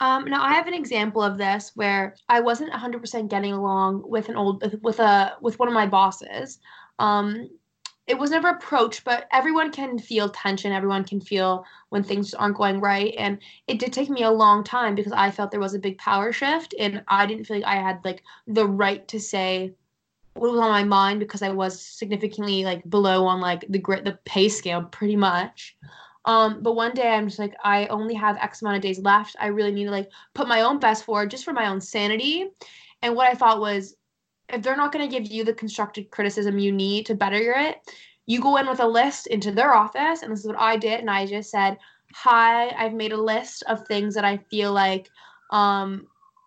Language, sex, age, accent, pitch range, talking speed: English, female, 20-39, American, 200-235 Hz, 220 wpm